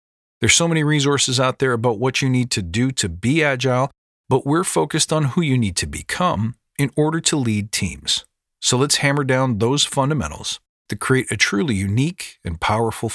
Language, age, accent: English, 40-59, American